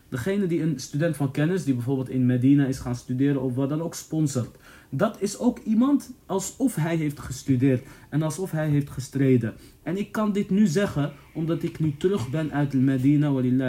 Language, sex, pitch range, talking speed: Dutch, male, 125-150 Hz, 195 wpm